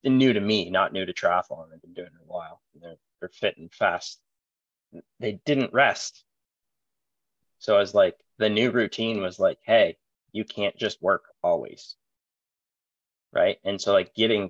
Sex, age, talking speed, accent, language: male, 20-39, 170 wpm, American, English